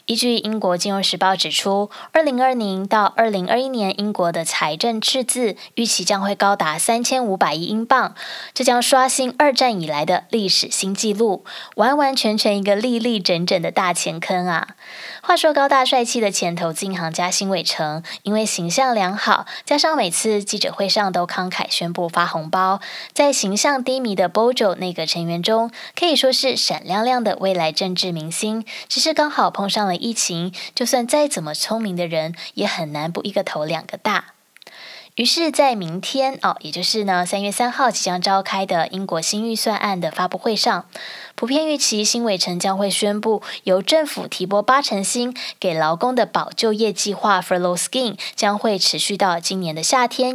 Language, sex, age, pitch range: Chinese, female, 20-39, 185-250 Hz